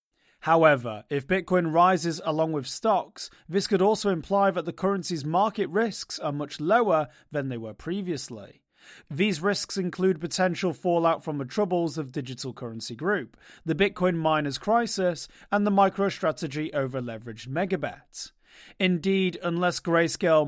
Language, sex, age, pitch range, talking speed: English, male, 30-49, 145-190 Hz, 140 wpm